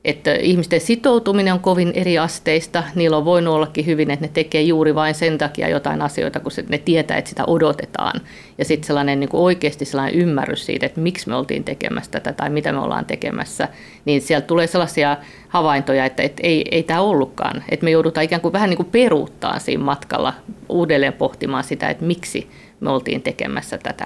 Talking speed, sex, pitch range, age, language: 190 wpm, female, 145-170 Hz, 50-69, Finnish